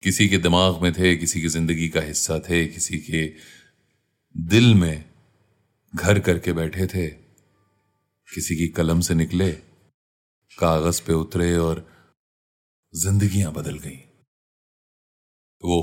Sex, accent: male, native